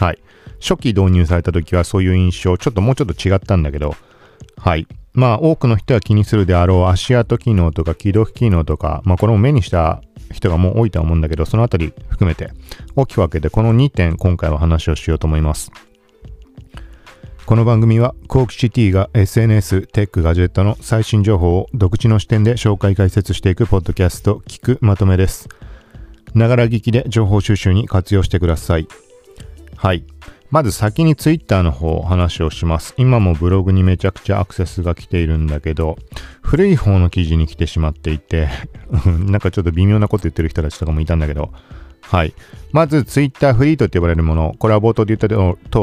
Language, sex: Japanese, male